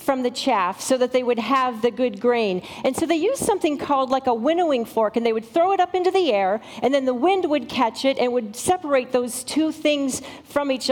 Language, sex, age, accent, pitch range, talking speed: English, female, 40-59, American, 220-280 Hz, 245 wpm